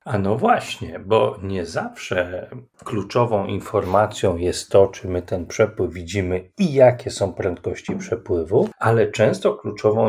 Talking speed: 135 wpm